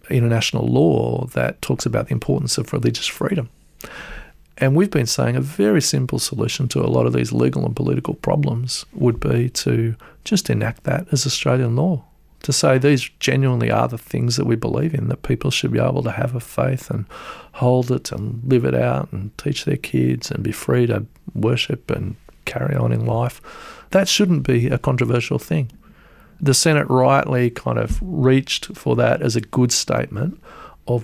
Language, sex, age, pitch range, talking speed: English, male, 40-59, 115-140 Hz, 185 wpm